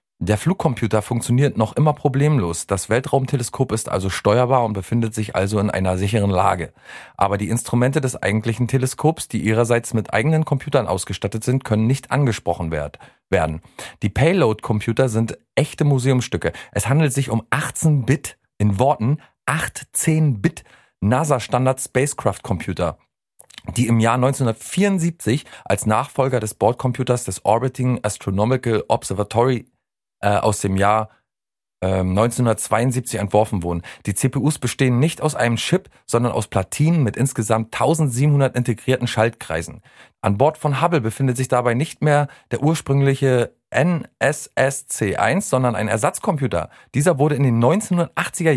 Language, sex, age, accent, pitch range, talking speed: German, male, 40-59, German, 105-135 Hz, 130 wpm